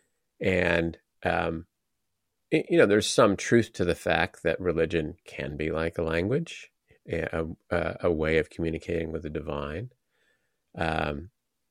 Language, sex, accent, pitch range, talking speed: English, male, American, 80-90 Hz, 135 wpm